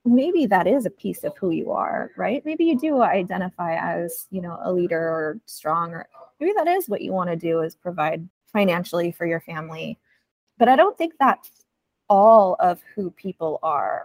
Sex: female